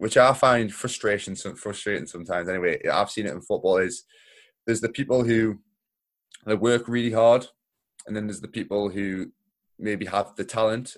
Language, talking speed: English, 165 wpm